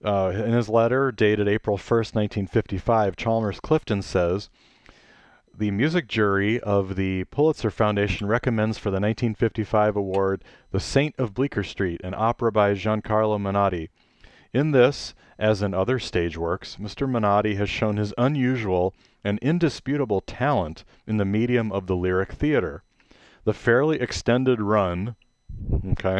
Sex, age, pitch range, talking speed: male, 30-49, 100-120 Hz, 140 wpm